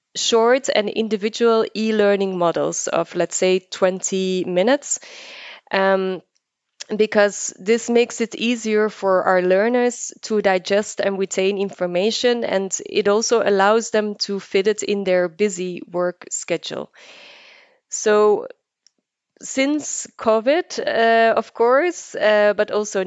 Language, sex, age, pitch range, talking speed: English, female, 20-39, 190-225 Hz, 120 wpm